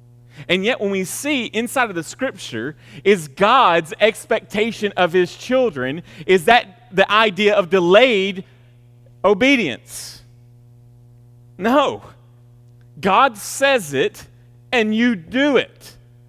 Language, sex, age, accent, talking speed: English, male, 40-59, American, 110 wpm